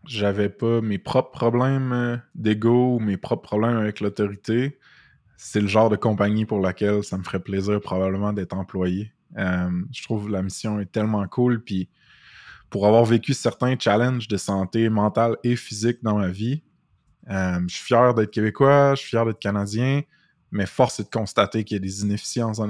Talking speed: 185 wpm